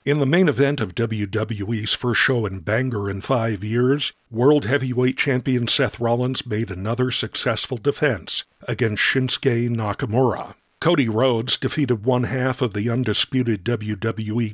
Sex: male